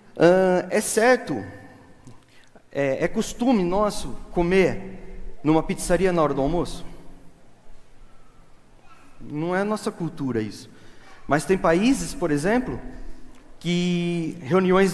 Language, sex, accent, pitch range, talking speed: Portuguese, male, Brazilian, 150-205 Hz, 105 wpm